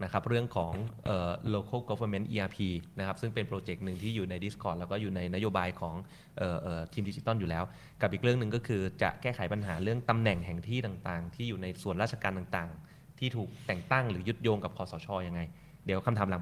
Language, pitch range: Thai, 100-120 Hz